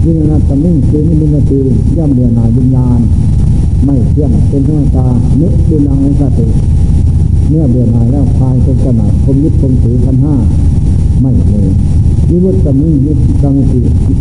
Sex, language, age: male, Thai, 60-79